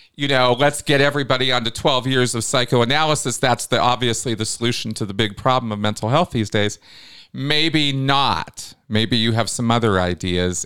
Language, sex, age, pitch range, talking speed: English, male, 40-59, 110-135 Hz, 180 wpm